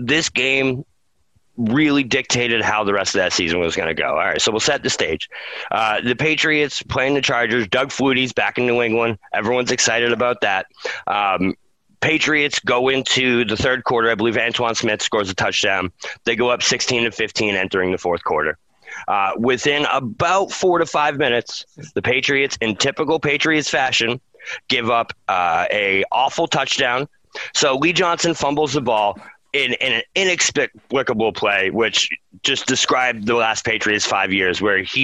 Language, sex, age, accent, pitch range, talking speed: English, male, 30-49, American, 115-145 Hz, 170 wpm